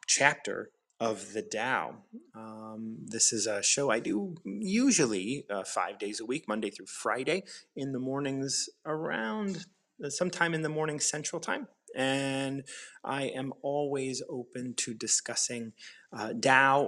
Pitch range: 110-140 Hz